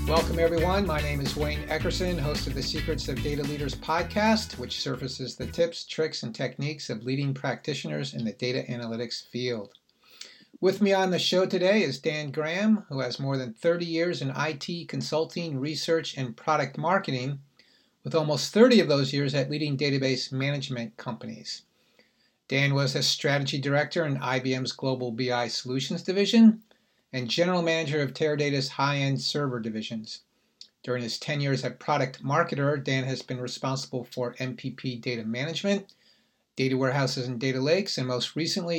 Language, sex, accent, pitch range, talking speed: English, male, American, 130-165 Hz, 165 wpm